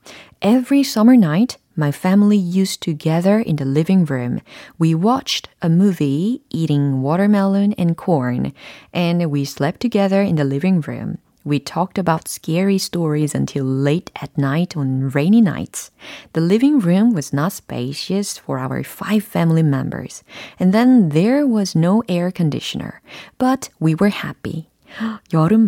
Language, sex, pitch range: Korean, female, 145-200 Hz